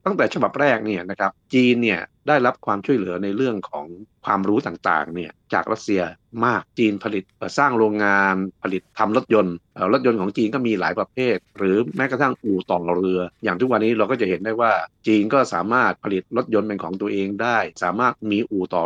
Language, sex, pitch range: Thai, male, 90-115 Hz